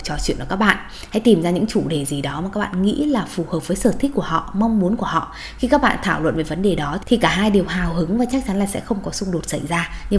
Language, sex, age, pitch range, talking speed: Vietnamese, female, 20-39, 165-220 Hz, 330 wpm